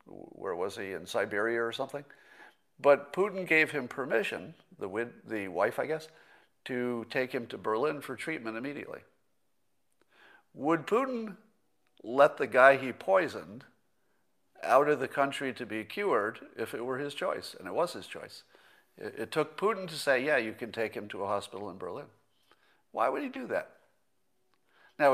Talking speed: 165 wpm